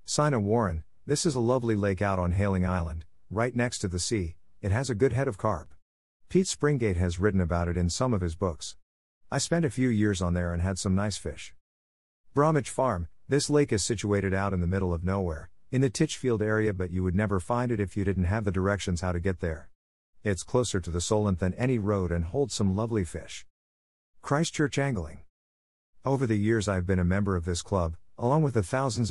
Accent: American